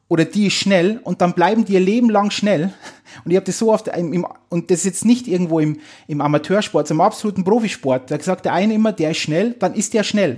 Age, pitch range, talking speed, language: 30-49, 160-195 Hz, 260 wpm, German